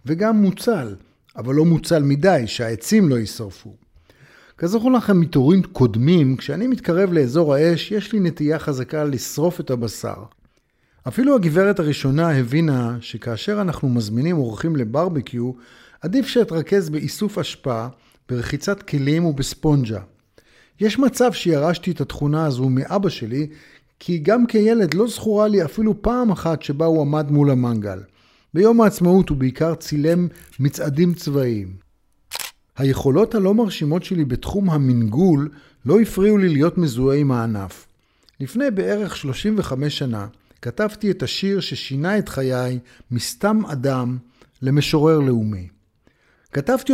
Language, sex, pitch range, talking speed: Hebrew, male, 125-195 Hz, 125 wpm